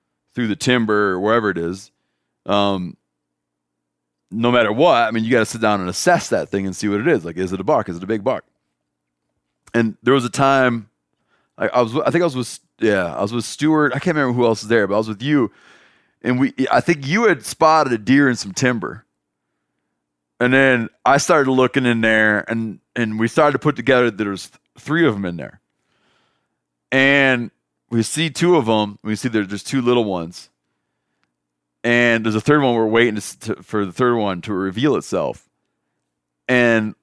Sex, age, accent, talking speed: male, 30-49, American, 205 wpm